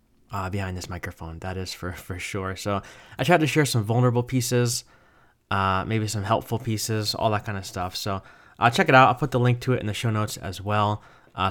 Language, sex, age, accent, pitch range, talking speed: English, male, 20-39, American, 100-120 Hz, 240 wpm